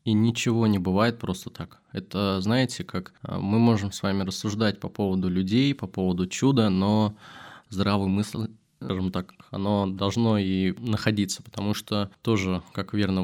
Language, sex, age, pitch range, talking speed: Russian, male, 20-39, 95-115 Hz, 155 wpm